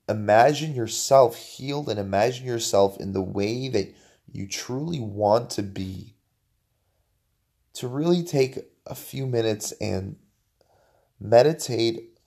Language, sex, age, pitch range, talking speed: English, male, 20-39, 105-140 Hz, 110 wpm